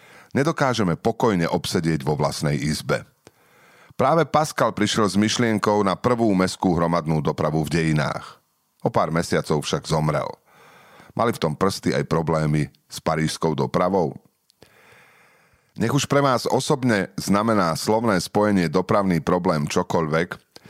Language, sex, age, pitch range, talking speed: Slovak, male, 40-59, 85-115 Hz, 125 wpm